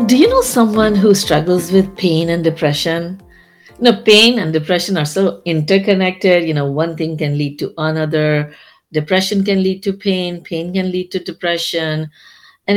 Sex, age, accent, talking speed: female, 60-79, Indian, 175 wpm